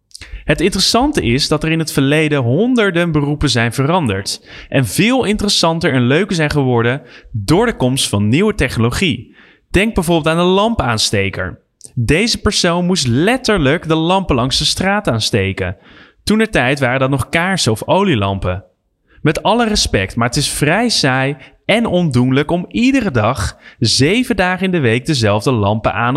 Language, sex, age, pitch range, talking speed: Dutch, male, 20-39, 115-175 Hz, 160 wpm